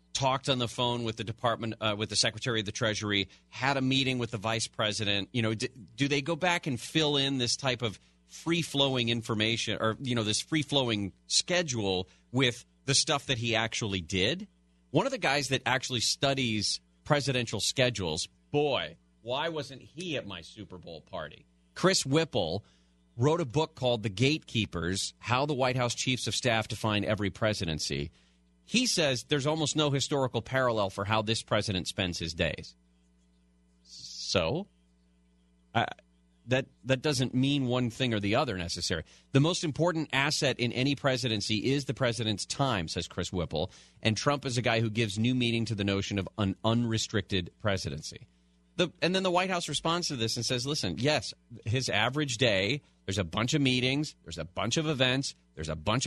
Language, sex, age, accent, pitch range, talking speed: English, male, 40-59, American, 95-135 Hz, 185 wpm